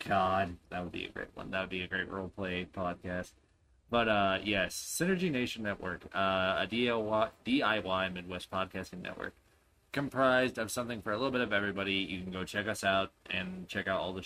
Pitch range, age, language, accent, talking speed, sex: 95-125 Hz, 20-39, English, American, 200 wpm, male